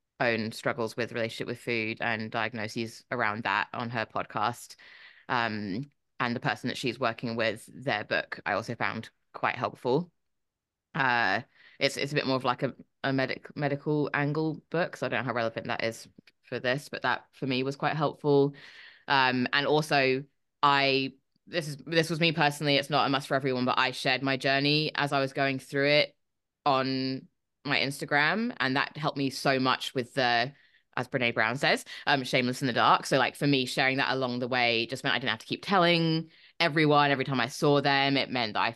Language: English